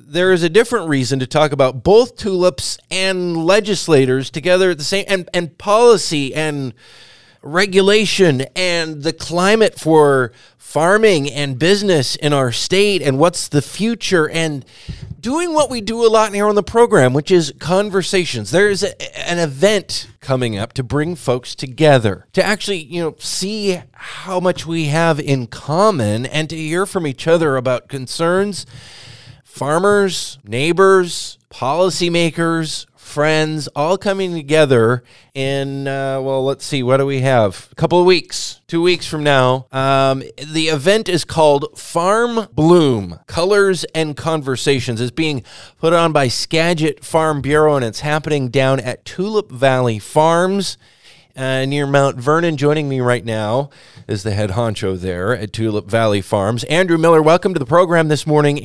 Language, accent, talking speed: English, American, 155 wpm